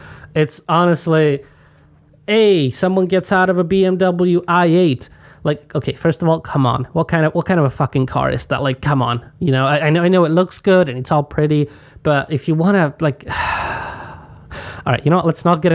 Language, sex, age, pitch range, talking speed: English, male, 20-39, 135-160 Hz, 225 wpm